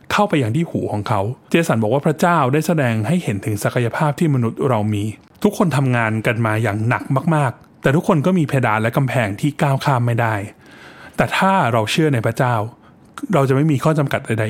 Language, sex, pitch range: Thai, male, 110-150 Hz